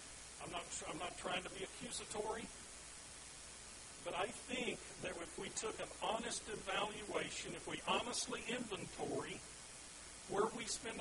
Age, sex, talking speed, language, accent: 50-69, male, 135 wpm, English, American